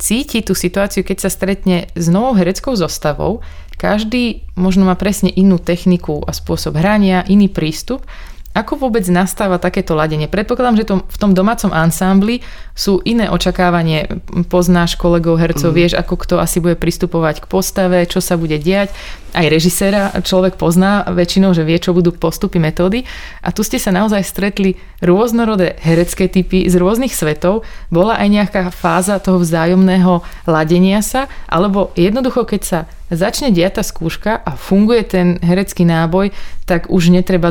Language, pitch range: Slovak, 170-195 Hz